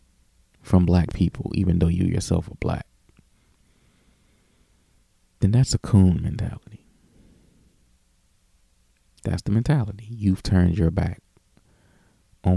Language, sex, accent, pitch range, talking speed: English, male, American, 85-100 Hz, 105 wpm